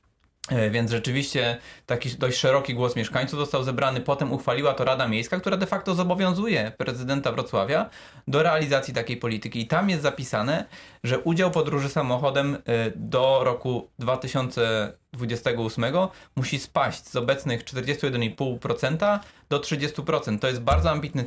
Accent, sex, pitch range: native, male, 120-155 Hz